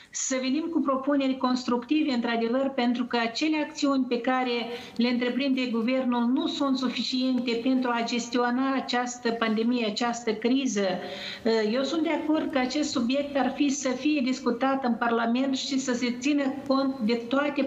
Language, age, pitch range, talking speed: Romanian, 50-69, 230-265 Hz, 155 wpm